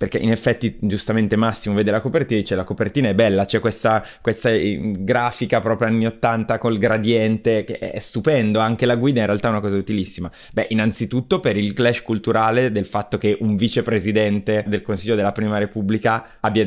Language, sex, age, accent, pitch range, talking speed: Italian, male, 20-39, native, 105-120 Hz, 185 wpm